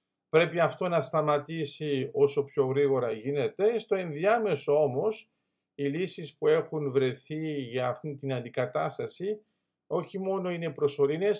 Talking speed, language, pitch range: 125 wpm, Greek, 140-180 Hz